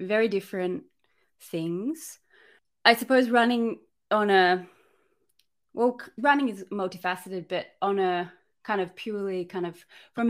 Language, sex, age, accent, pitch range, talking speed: English, female, 20-39, Australian, 165-190 Hz, 120 wpm